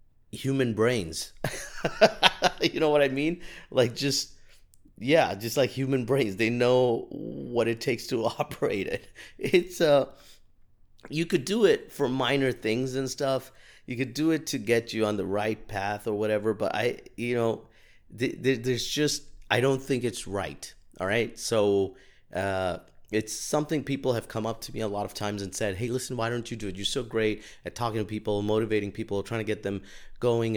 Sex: male